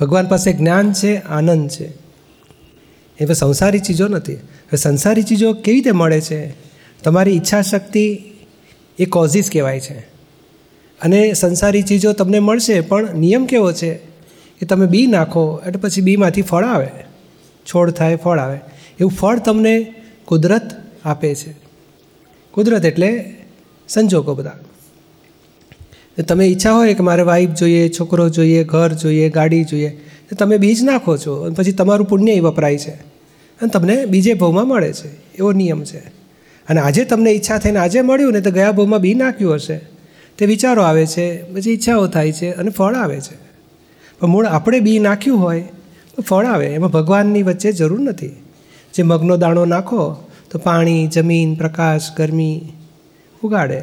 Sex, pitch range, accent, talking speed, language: male, 160-205 Hz, native, 155 wpm, Gujarati